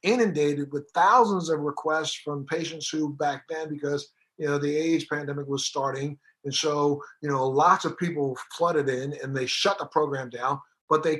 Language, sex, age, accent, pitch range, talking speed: English, male, 50-69, American, 155-230 Hz, 190 wpm